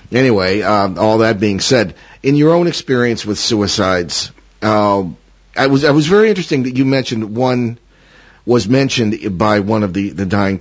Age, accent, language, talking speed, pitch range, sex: 50-69, American, English, 175 wpm, 100-135 Hz, male